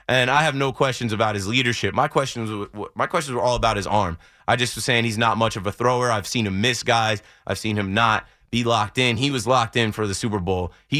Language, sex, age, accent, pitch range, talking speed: English, male, 20-39, American, 105-135 Hz, 255 wpm